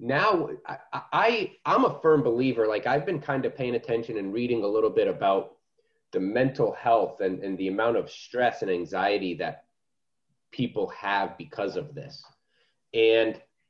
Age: 30-49